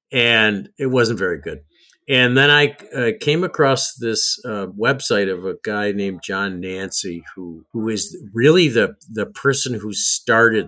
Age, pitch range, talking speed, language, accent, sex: 50-69, 100-130 Hz, 165 wpm, English, American, male